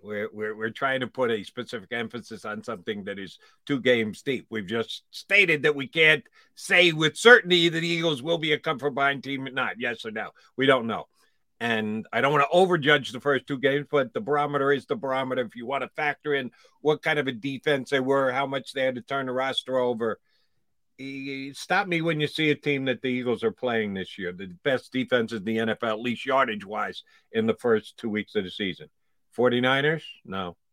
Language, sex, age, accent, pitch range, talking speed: English, male, 50-69, American, 120-155 Hz, 225 wpm